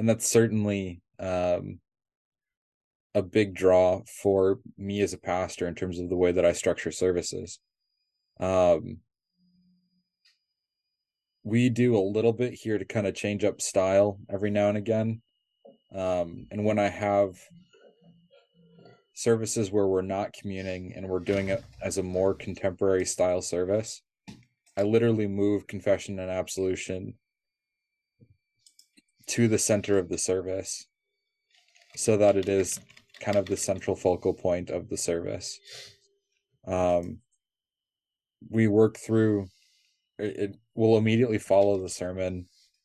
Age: 20-39